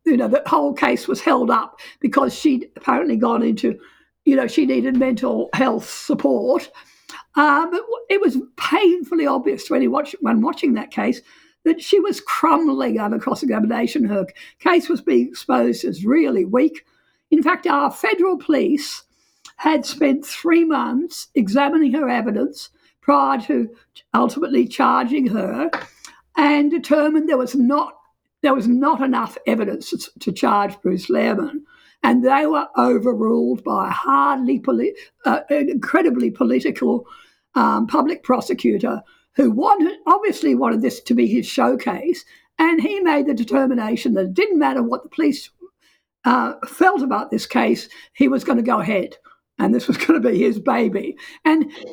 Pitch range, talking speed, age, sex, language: 265-330 Hz, 150 wpm, 50-69, female, English